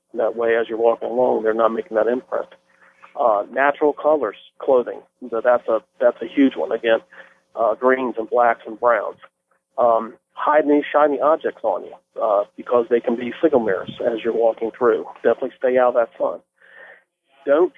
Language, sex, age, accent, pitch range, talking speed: English, male, 40-59, American, 120-145 Hz, 180 wpm